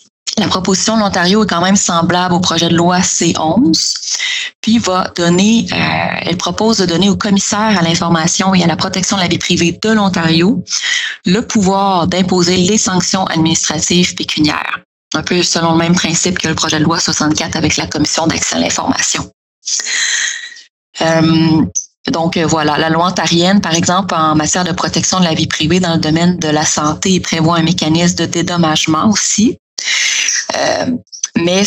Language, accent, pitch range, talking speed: French, Canadian, 165-200 Hz, 170 wpm